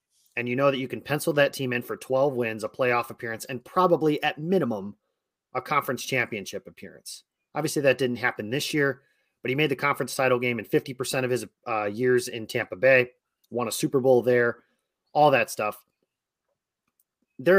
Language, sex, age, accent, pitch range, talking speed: English, male, 30-49, American, 120-140 Hz, 190 wpm